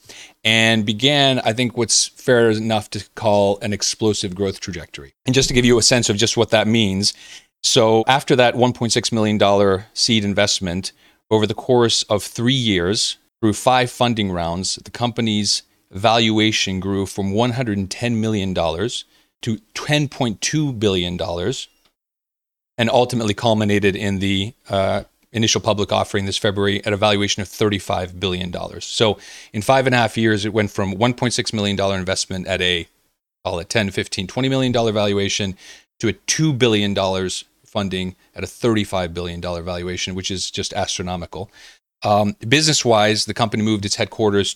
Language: English